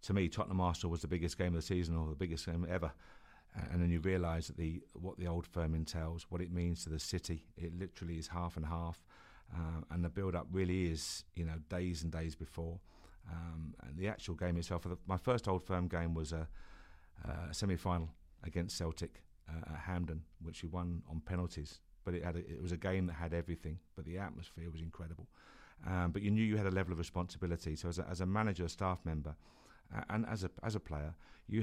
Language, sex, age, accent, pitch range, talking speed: English, male, 50-69, British, 80-90 Hz, 215 wpm